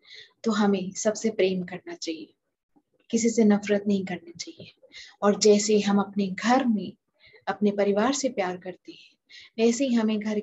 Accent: native